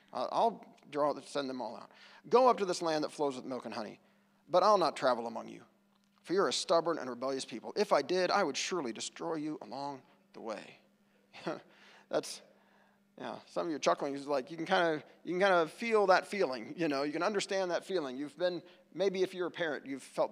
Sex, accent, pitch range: male, American, 145-200 Hz